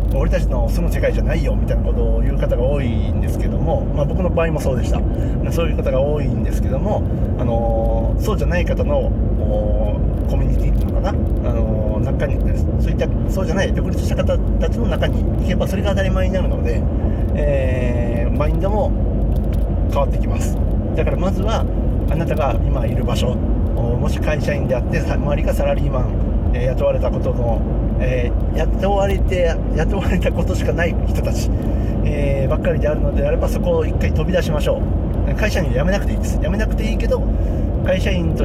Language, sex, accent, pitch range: Japanese, male, native, 80-110 Hz